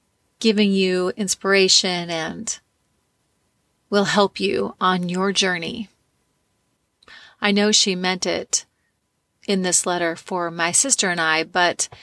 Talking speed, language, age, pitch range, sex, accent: 120 wpm, English, 30-49, 175-210 Hz, female, American